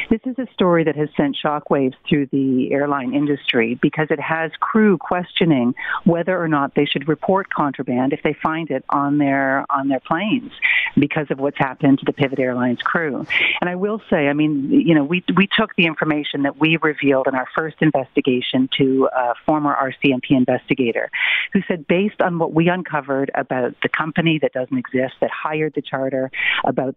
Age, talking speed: 50-69, 190 wpm